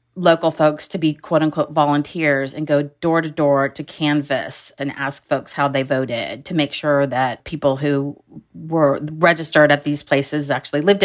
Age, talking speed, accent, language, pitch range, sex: 30-49, 170 wpm, American, English, 145-165 Hz, female